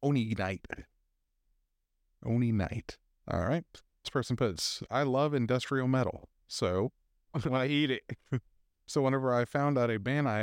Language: English